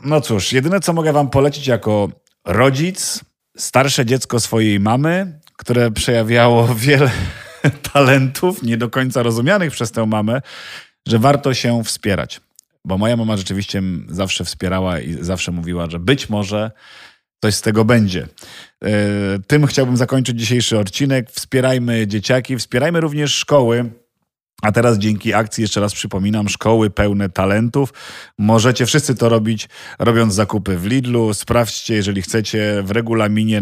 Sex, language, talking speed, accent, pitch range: male, Polish, 135 wpm, native, 105-135 Hz